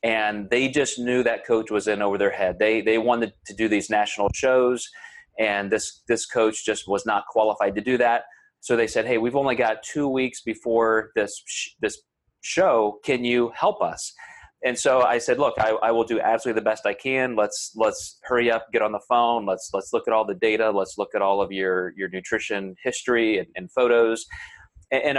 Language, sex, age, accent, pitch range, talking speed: English, male, 30-49, American, 105-125 Hz, 215 wpm